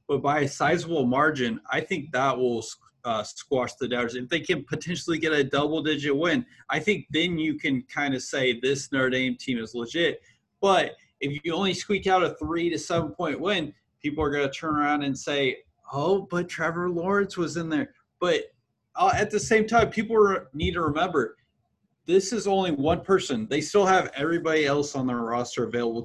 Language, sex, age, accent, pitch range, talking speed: English, male, 30-49, American, 130-170 Hz, 195 wpm